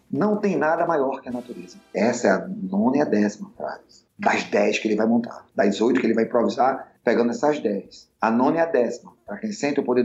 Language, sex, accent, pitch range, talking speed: Portuguese, male, Brazilian, 120-170 Hz, 235 wpm